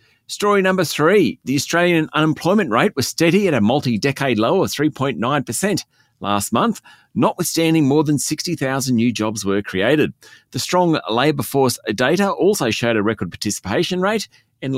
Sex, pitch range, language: male, 115-155 Hz, English